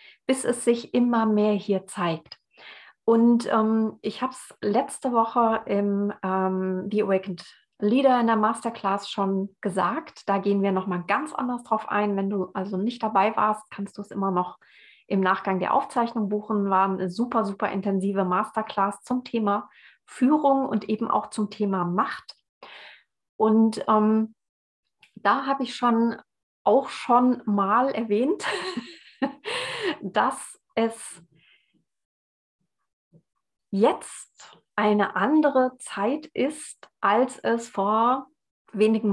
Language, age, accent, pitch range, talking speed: German, 30-49, German, 195-240 Hz, 130 wpm